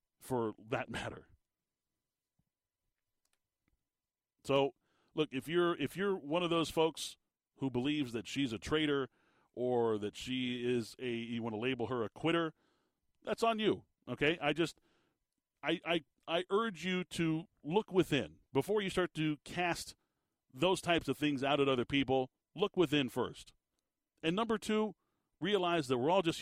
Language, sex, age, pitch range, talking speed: English, male, 40-59, 135-170 Hz, 155 wpm